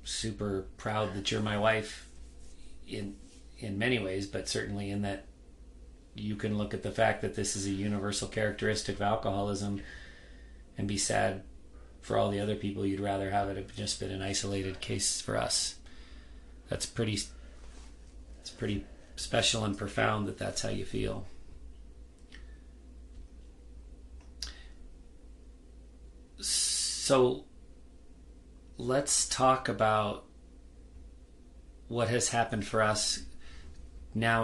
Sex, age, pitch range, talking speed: male, 30-49, 65-110 Hz, 120 wpm